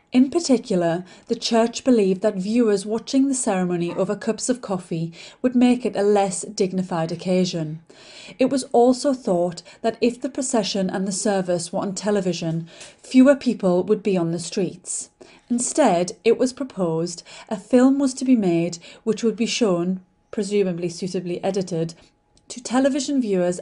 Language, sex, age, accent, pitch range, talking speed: Russian, female, 30-49, British, 185-235 Hz, 160 wpm